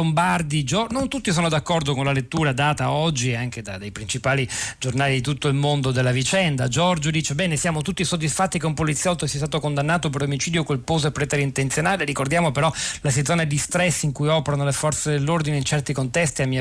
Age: 40-59